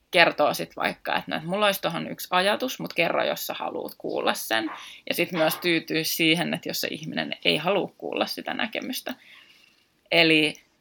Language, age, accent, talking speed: Finnish, 20-39, native, 170 wpm